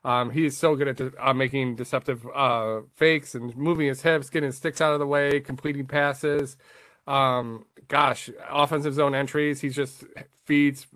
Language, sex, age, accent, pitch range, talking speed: English, male, 20-39, American, 125-140 Hz, 175 wpm